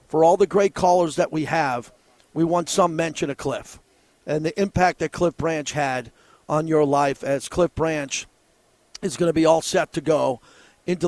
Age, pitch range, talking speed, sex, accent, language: 40-59, 150-180 Hz, 195 wpm, male, American, English